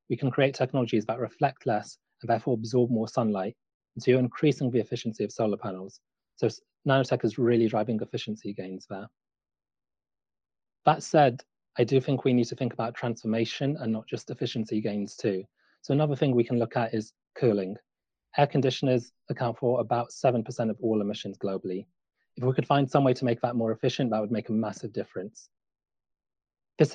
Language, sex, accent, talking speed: English, male, British, 185 wpm